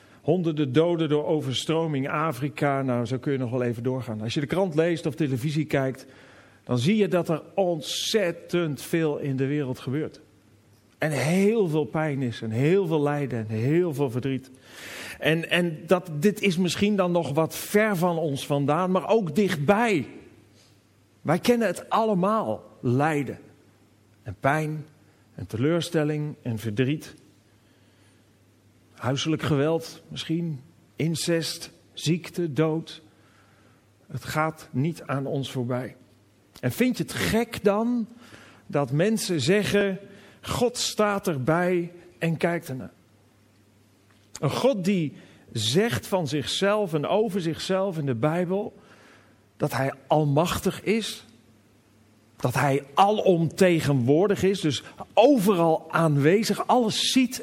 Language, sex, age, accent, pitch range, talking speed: Dutch, male, 40-59, Dutch, 125-180 Hz, 130 wpm